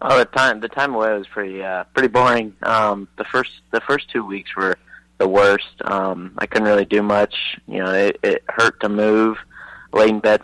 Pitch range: 100-115 Hz